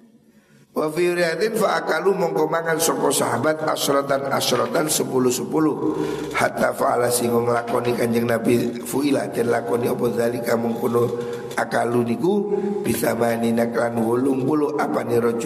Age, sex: 60-79, male